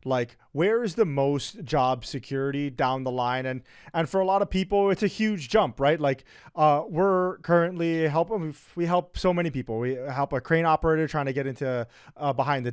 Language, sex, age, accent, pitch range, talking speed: English, male, 30-49, American, 135-175 Hz, 205 wpm